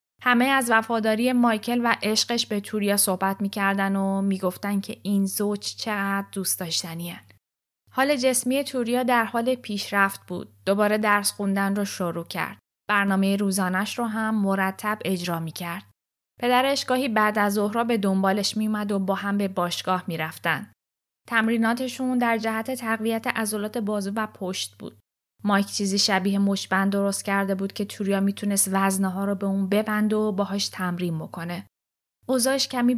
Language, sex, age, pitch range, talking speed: Persian, female, 10-29, 190-215 Hz, 155 wpm